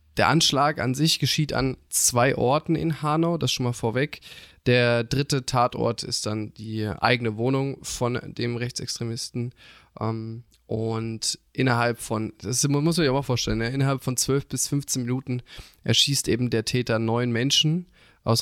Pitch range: 115-135 Hz